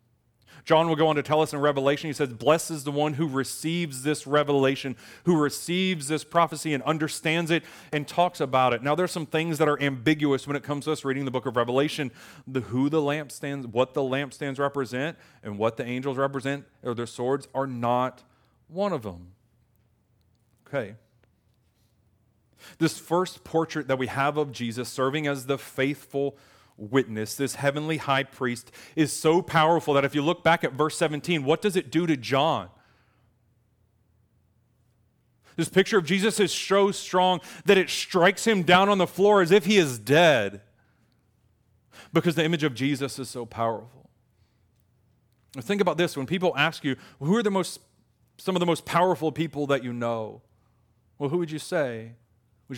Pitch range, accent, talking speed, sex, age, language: 115-155 Hz, American, 180 wpm, male, 30-49, English